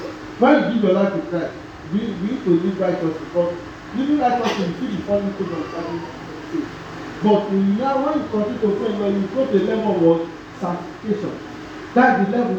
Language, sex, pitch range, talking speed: English, male, 180-240 Hz, 200 wpm